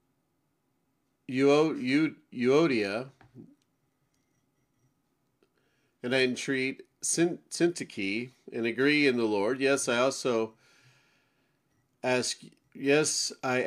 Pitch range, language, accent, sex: 115-145 Hz, English, American, male